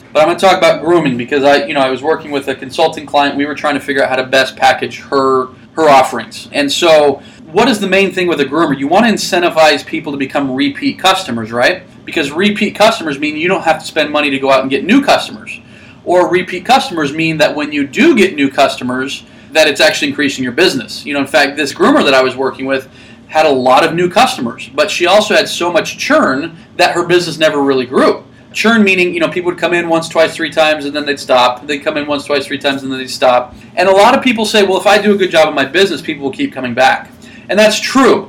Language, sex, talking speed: English, male, 260 wpm